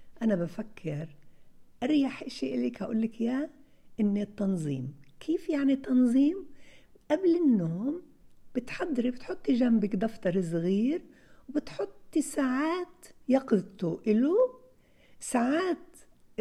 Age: 60-79